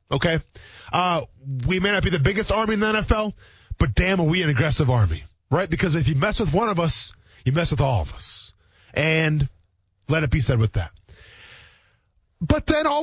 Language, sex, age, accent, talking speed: English, male, 20-39, American, 205 wpm